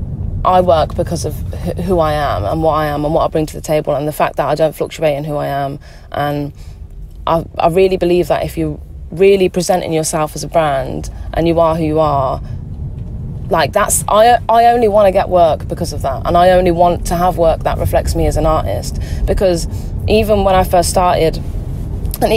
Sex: female